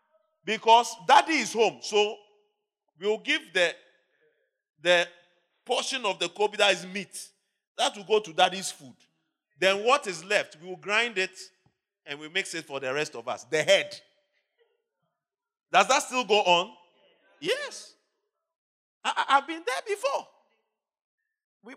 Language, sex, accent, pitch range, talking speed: English, male, Nigerian, 175-280 Hz, 150 wpm